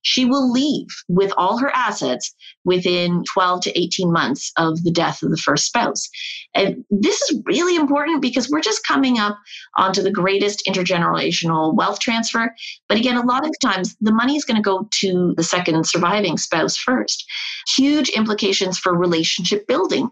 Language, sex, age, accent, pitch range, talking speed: English, female, 30-49, American, 180-255 Hz, 170 wpm